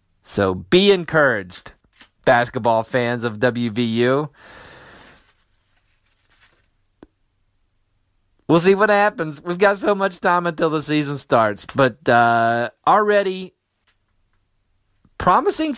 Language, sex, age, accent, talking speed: English, male, 40-59, American, 90 wpm